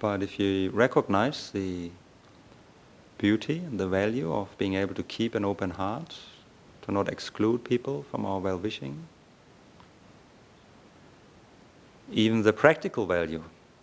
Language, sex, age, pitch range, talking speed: English, male, 40-59, 95-120 Hz, 125 wpm